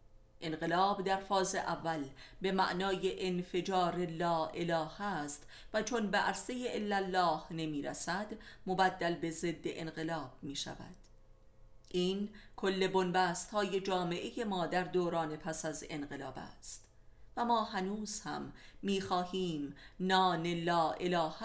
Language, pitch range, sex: Persian, 120-195 Hz, female